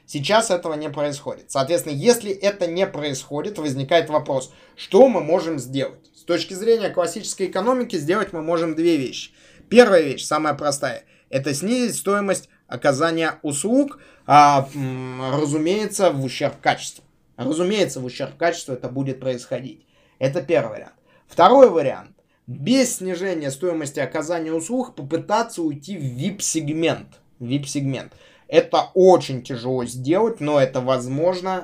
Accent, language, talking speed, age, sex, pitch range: native, Russian, 130 wpm, 20-39, male, 135-180 Hz